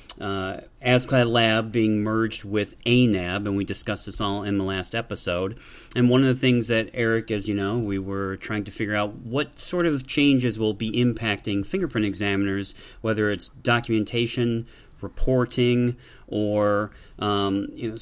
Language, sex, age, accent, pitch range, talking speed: English, male, 40-59, American, 105-120 Hz, 160 wpm